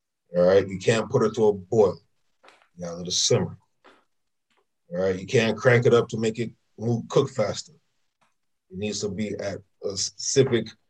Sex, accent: male, American